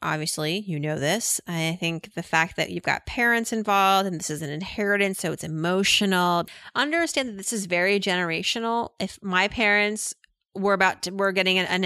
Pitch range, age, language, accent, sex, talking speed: 175-210 Hz, 30-49, English, American, female, 180 wpm